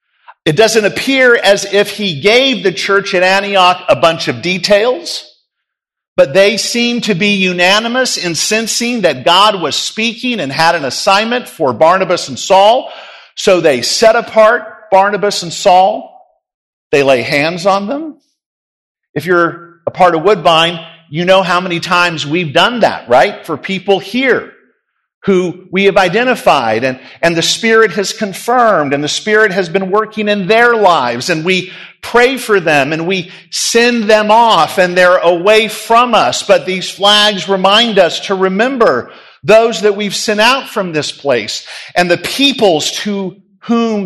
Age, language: 50-69, English